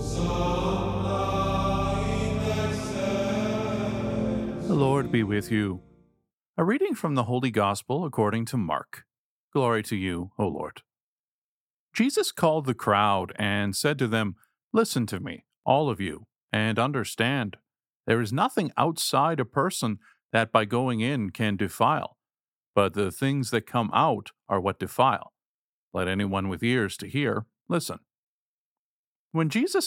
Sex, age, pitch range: male, 50-69, 105-135 Hz